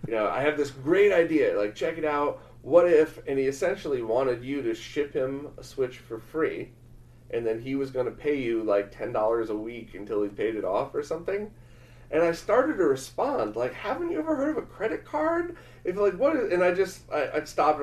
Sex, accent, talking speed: male, American, 230 wpm